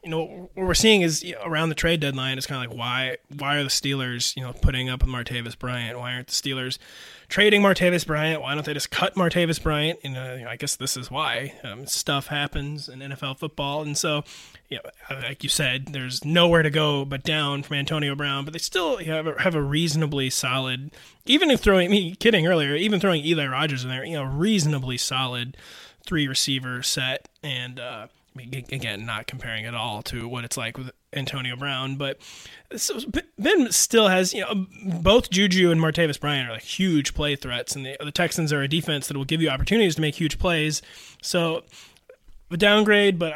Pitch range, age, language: 135-170 Hz, 20-39, English